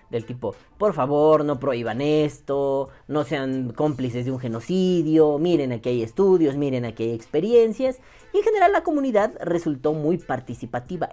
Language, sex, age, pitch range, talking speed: Spanish, female, 30-49, 125-200 Hz, 155 wpm